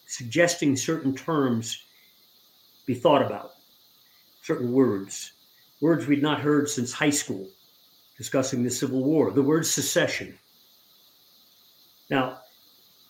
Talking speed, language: 105 wpm, English